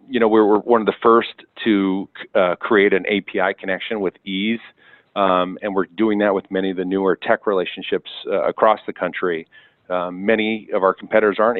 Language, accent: English, American